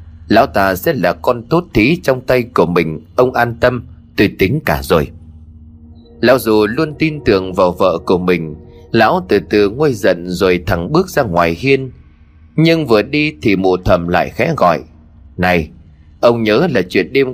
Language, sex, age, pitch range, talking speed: Vietnamese, male, 20-39, 85-125 Hz, 185 wpm